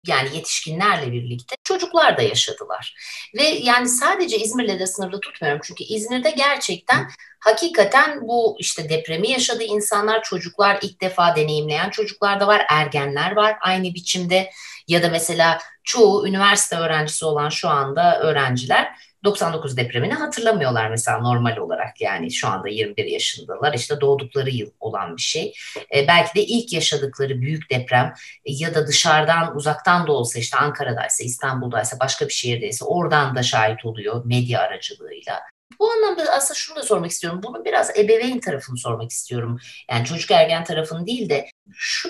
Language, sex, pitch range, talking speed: Turkish, female, 140-220 Hz, 150 wpm